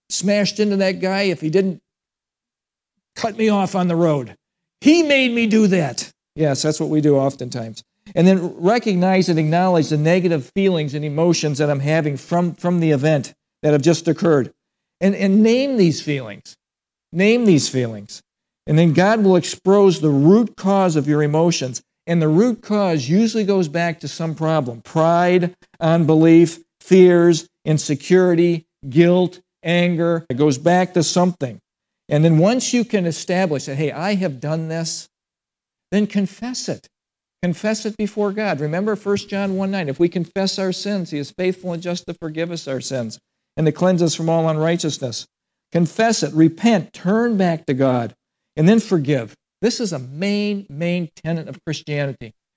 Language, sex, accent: English, male, American